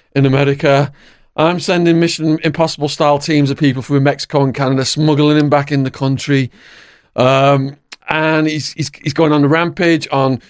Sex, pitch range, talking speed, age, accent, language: male, 130-170 Hz, 170 wpm, 40-59, British, English